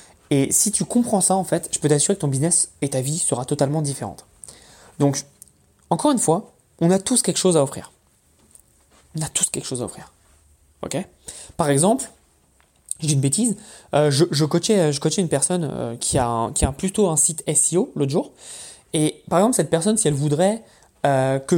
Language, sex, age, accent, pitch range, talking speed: French, male, 20-39, French, 140-195 Hz, 205 wpm